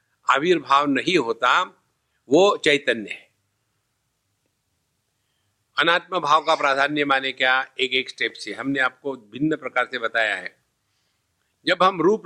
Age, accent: 60-79, Indian